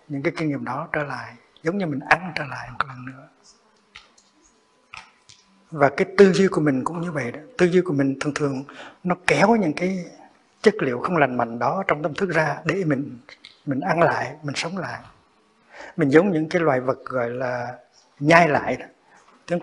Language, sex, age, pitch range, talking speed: Vietnamese, male, 60-79, 145-180 Hz, 200 wpm